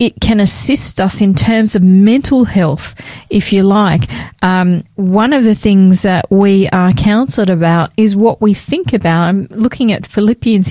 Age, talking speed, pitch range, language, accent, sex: 40-59, 175 wpm, 185-220 Hz, English, Australian, female